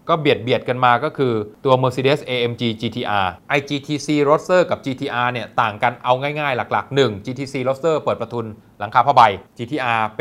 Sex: male